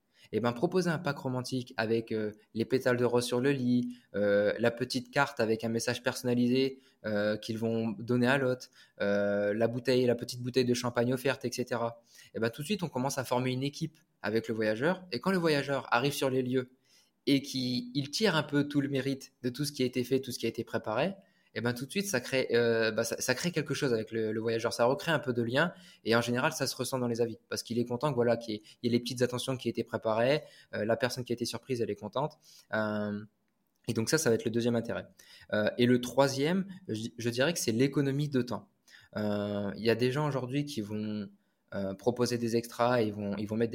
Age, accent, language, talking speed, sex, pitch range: 20-39, French, French, 255 wpm, male, 115-135 Hz